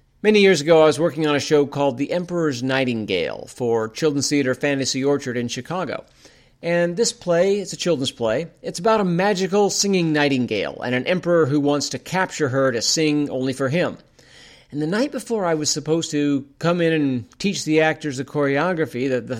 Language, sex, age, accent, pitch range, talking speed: English, male, 40-59, American, 140-185 Hz, 200 wpm